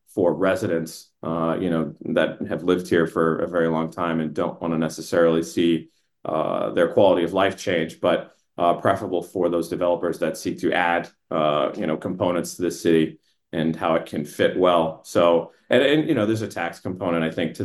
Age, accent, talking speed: 30-49, American, 205 wpm